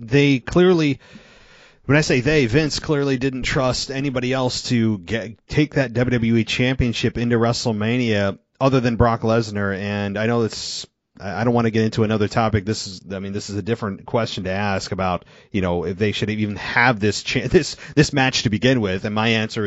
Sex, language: male, English